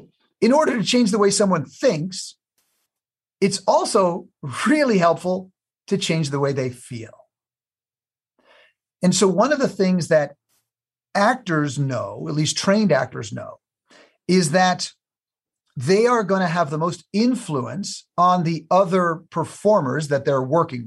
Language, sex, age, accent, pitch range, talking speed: English, male, 50-69, American, 145-190 Hz, 140 wpm